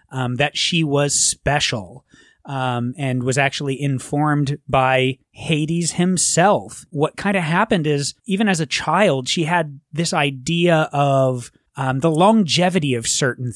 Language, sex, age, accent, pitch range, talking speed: English, male, 30-49, American, 125-155 Hz, 140 wpm